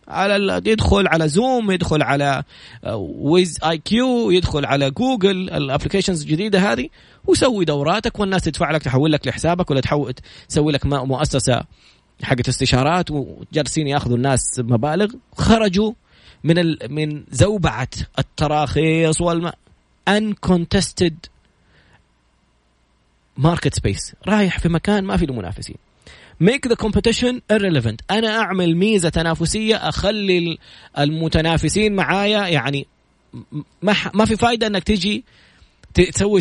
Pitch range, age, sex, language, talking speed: 130-190 Hz, 20-39, male, Arabic, 110 wpm